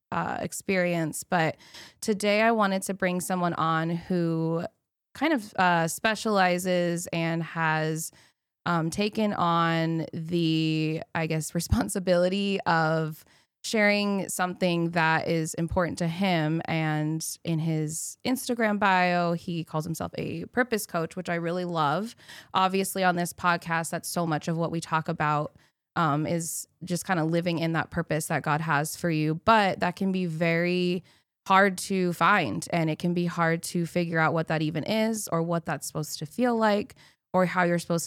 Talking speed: 165 wpm